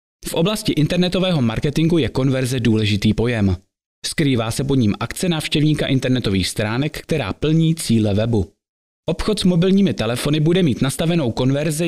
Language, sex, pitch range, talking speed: Czech, male, 110-155 Hz, 140 wpm